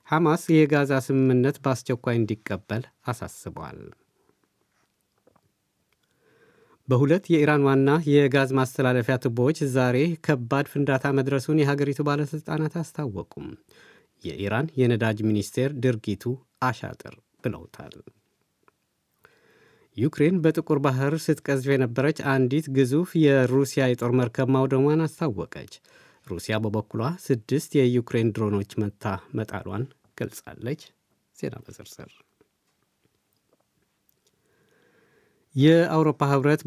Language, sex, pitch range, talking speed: Amharic, male, 125-145 Hz, 85 wpm